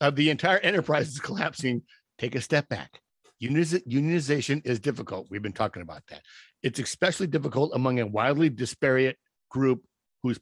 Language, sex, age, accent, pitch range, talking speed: English, male, 50-69, American, 125-155 Hz, 155 wpm